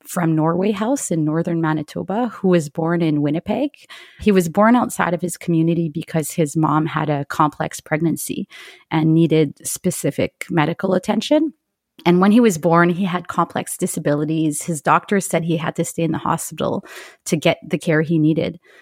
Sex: female